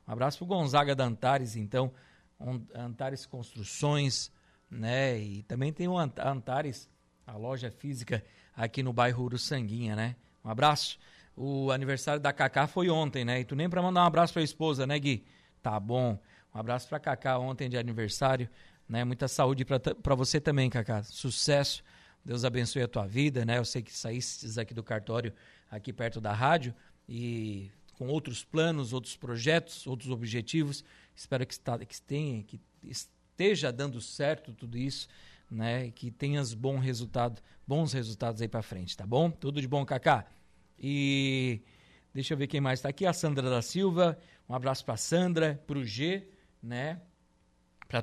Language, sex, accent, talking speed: Portuguese, male, Brazilian, 165 wpm